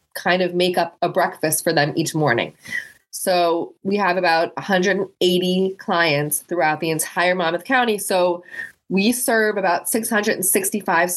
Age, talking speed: 20-39, 140 wpm